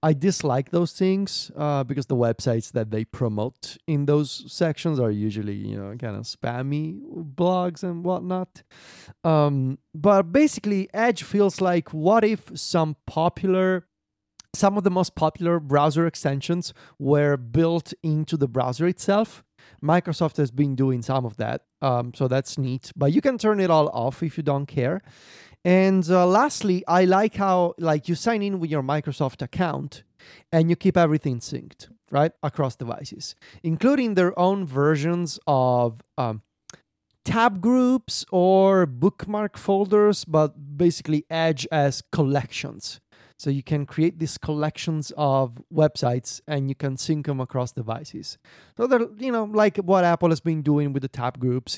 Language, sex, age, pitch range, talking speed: English, male, 30-49, 135-180 Hz, 160 wpm